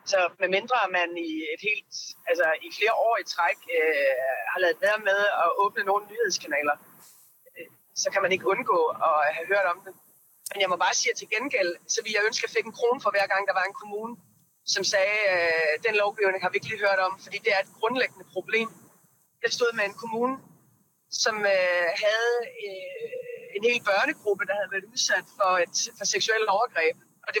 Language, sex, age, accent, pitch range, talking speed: Danish, female, 30-49, native, 190-260 Hz, 205 wpm